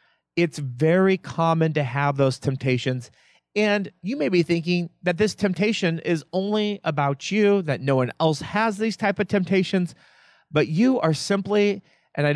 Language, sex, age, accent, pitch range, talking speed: English, male, 40-59, American, 140-185 Hz, 165 wpm